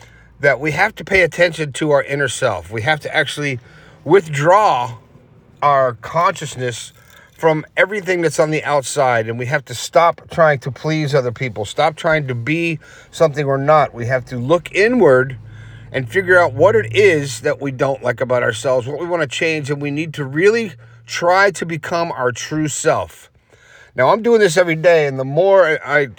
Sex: male